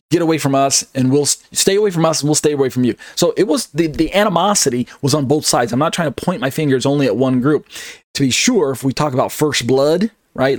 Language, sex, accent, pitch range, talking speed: English, male, American, 125-155 Hz, 265 wpm